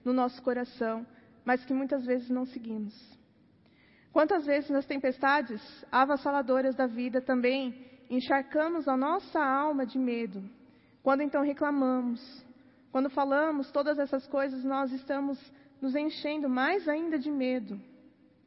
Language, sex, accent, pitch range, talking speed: Portuguese, female, Brazilian, 240-280 Hz, 125 wpm